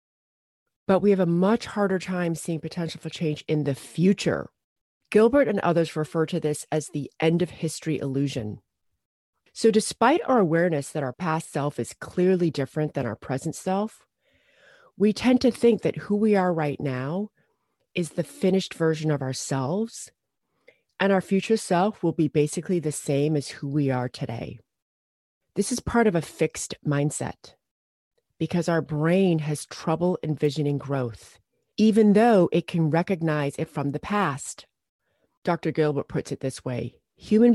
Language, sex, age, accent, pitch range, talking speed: English, female, 30-49, American, 145-195 Hz, 160 wpm